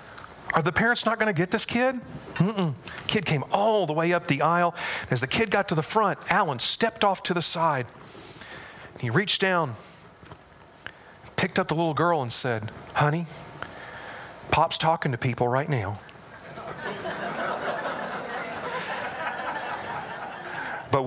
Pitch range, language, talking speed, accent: 130-180 Hz, English, 140 wpm, American